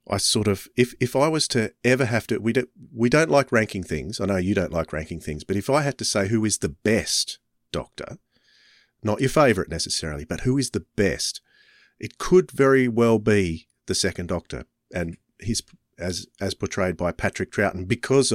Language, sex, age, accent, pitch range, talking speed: English, male, 40-59, Australian, 100-125 Hz, 205 wpm